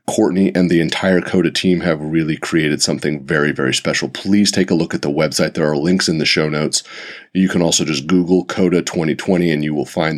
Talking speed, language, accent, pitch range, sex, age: 225 wpm, English, American, 80-95 Hz, male, 30-49